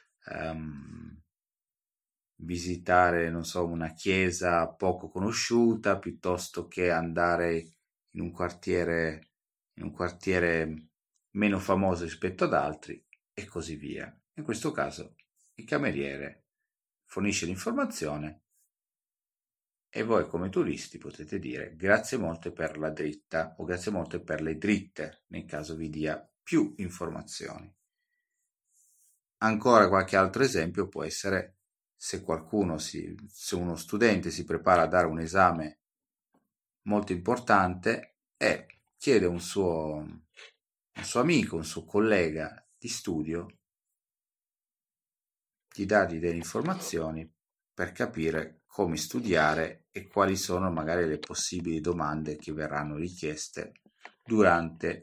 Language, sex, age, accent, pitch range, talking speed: Italian, male, 30-49, native, 80-95 Hz, 115 wpm